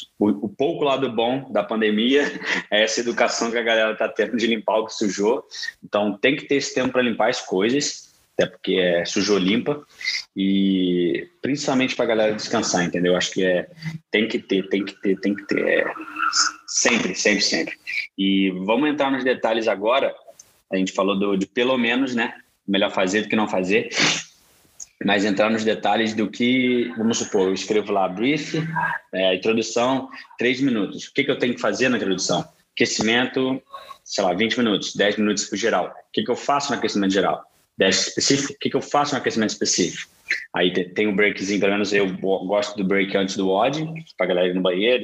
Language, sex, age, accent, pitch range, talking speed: Portuguese, male, 20-39, Brazilian, 100-135 Hz, 195 wpm